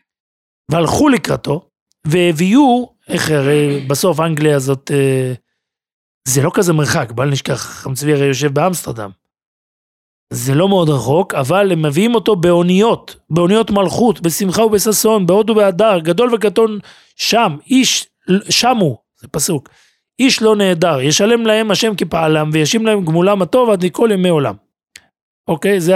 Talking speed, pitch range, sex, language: 135 wpm, 150-210 Hz, male, Hebrew